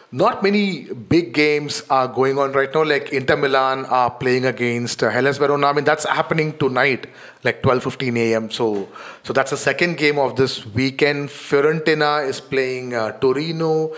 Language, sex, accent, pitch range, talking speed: English, male, Indian, 130-155 Hz, 170 wpm